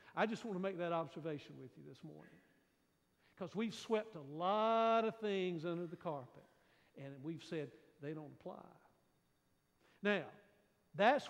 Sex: male